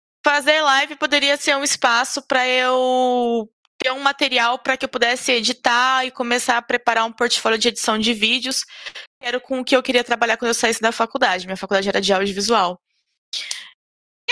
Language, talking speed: Portuguese, 185 wpm